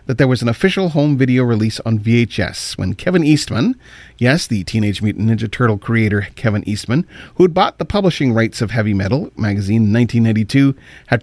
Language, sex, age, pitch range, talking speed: English, male, 40-59, 110-145 Hz, 180 wpm